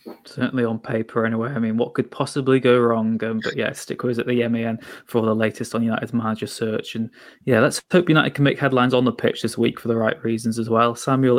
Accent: British